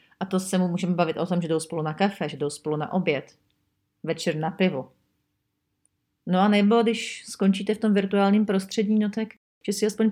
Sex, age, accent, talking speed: female, 40-59, native, 210 wpm